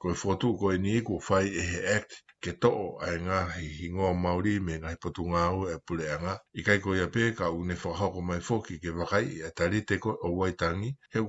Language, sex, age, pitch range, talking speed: English, male, 60-79, 85-105 Hz, 180 wpm